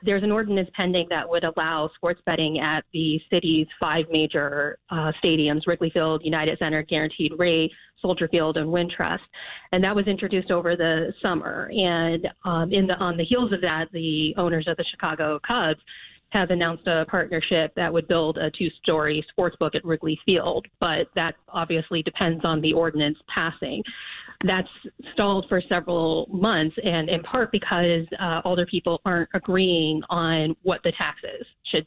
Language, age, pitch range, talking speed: English, 30-49, 160-185 Hz, 170 wpm